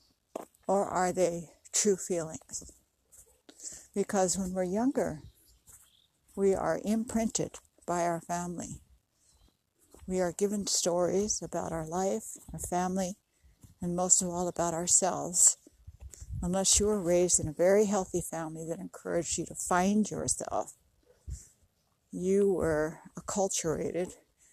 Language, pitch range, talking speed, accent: English, 165-195 Hz, 115 wpm, American